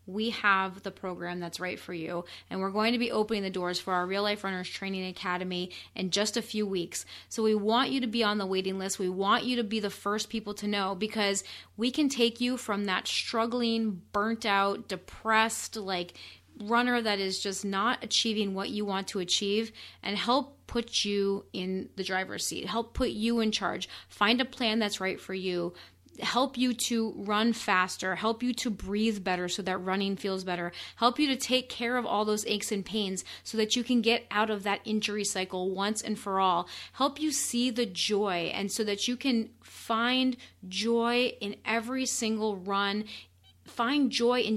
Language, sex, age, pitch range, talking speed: English, female, 30-49, 190-230 Hz, 200 wpm